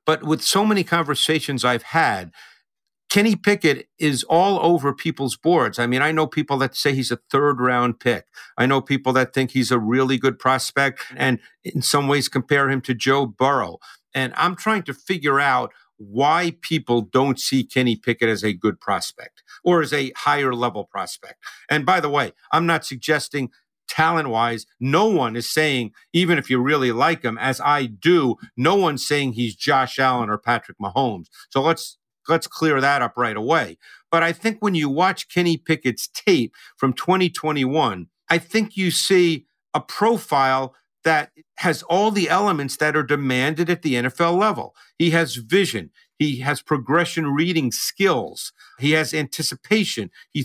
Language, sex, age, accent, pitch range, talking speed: English, male, 50-69, American, 130-165 Hz, 170 wpm